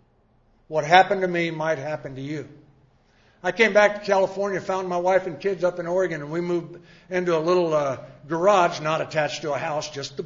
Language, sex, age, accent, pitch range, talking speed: English, male, 60-79, American, 155-205 Hz, 210 wpm